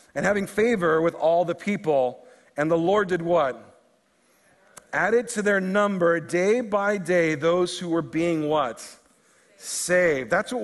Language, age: English, 40-59